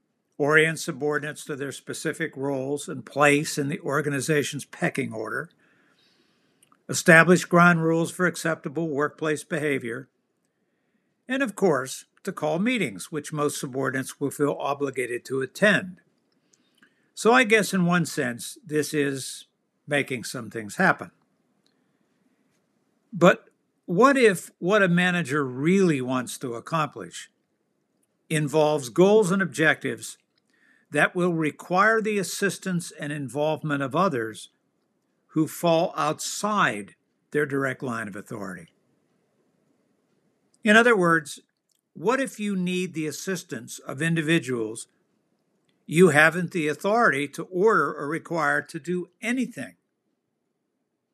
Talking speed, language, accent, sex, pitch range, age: 115 wpm, English, American, male, 140-185 Hz, 60-79